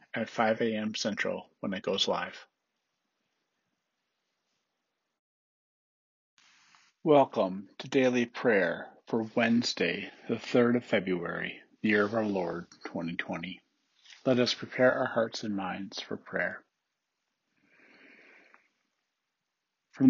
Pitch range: 110-130 Hz